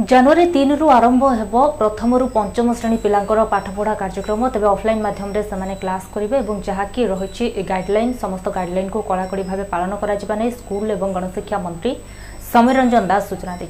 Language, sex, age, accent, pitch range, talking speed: Hindi, female, 20-39, native, 190-240 Hz, 130 wpm